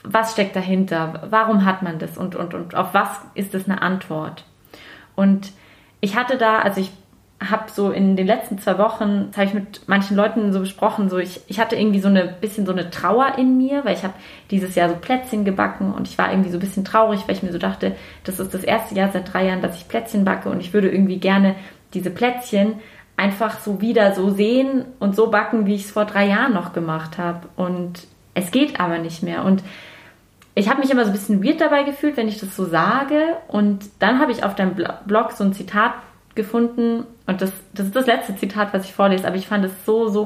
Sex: female